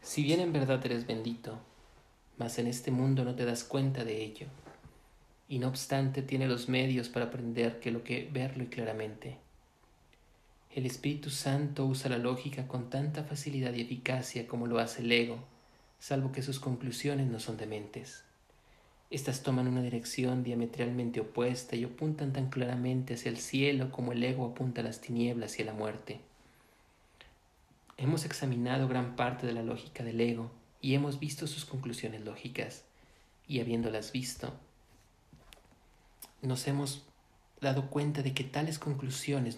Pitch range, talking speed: 120-135 Hz, 155 wpm